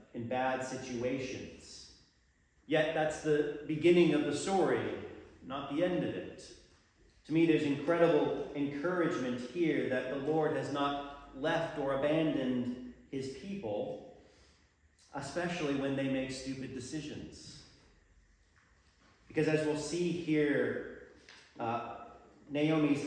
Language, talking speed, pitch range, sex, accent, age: English, 115 wpm, 130-155 Hz, male, American, 40-59